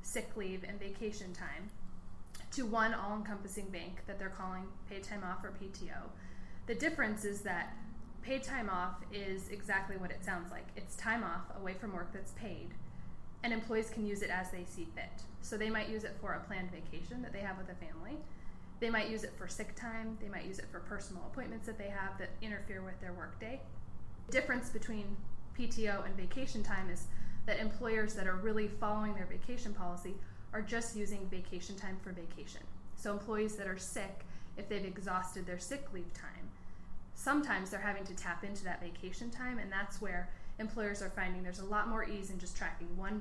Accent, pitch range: American, 180-215 Hz